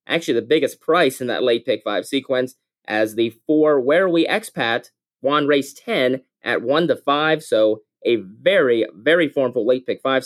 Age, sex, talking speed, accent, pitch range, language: 20-39, male, 180 wpm, American, 140-200 Hz, English